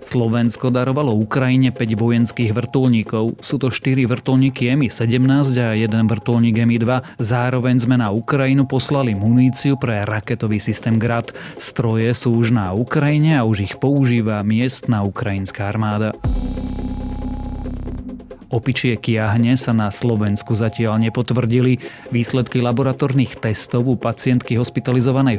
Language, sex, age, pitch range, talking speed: Slovak, male, 30-49, 110-125 Hz, 125 wpm